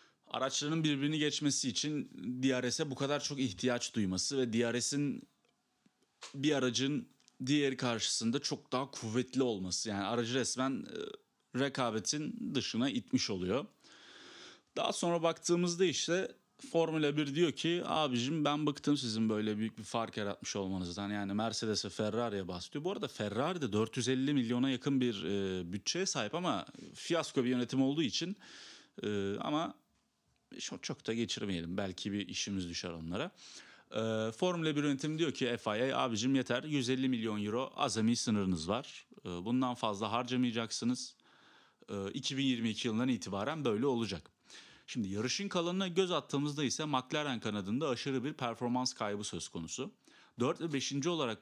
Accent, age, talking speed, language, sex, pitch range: native, 30-49, 135 wpm, Turkish, male, 110-145 Hz